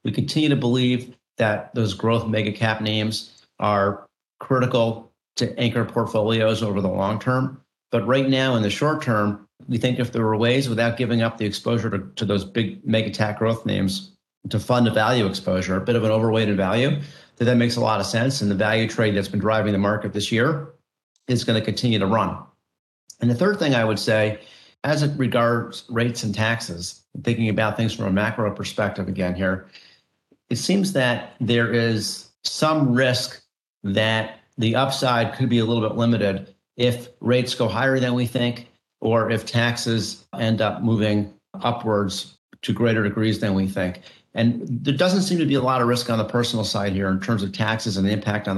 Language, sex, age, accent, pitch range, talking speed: English, male, 40-59, American, 105-120 Hz, 200 wpm